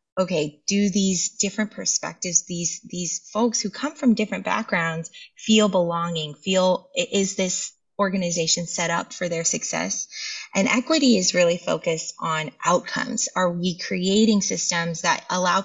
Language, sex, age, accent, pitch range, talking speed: English, female, 20-39, American, 170-215 Hz, 140 wpm